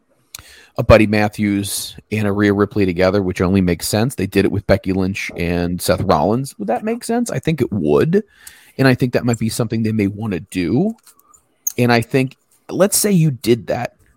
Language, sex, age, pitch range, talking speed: English, male, 30-49, 105-130 Hz, 210 wpm